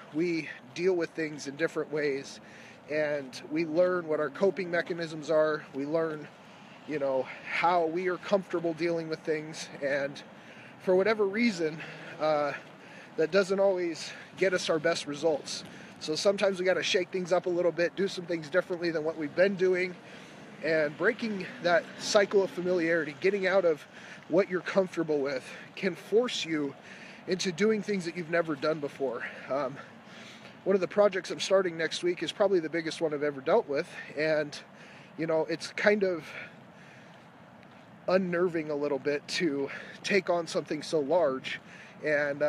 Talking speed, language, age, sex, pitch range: 165 wpm, English, 30-49, male, 155-195 Hz